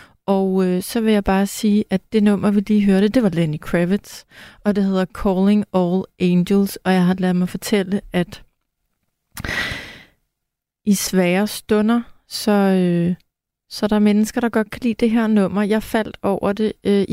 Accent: native